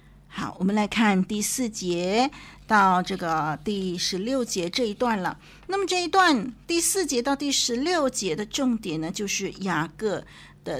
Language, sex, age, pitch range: Chinese, female, 50-69, 185-245 Hz